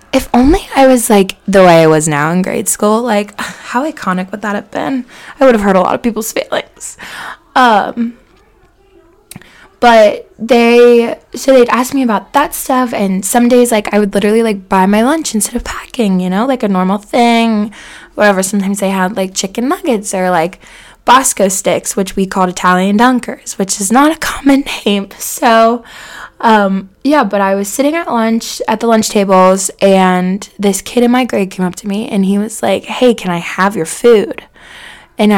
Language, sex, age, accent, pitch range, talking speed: English, female, 10-29, American, 190-240 Hz, 195 wpm